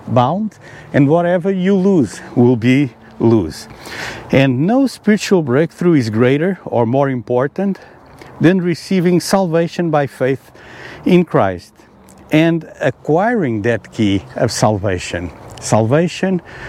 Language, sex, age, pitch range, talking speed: English, male, 60-79, 115-155 Hz, 110 wpm